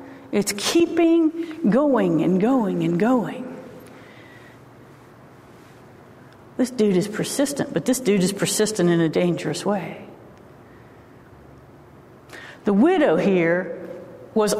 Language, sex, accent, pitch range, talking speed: English, female, American, 195-285 Hz, 100 wpm